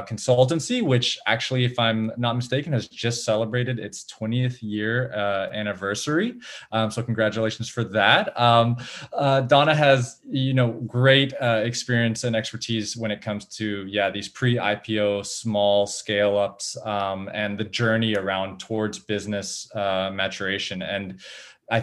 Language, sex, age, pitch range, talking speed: English, male, 20-39, 105-120 Hz, 145 wpm